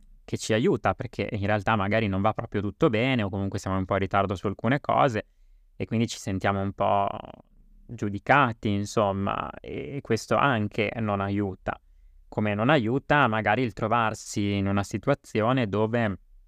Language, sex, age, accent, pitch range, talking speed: Italian, male, 20-39, native, 100-115 Hz, 165 wpm